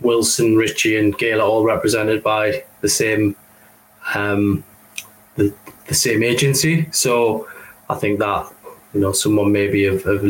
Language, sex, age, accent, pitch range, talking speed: English, male, 20-39, British, 105-130 Hz, 140 wpm